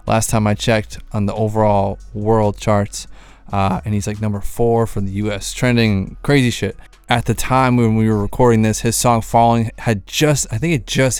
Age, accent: 20-39, American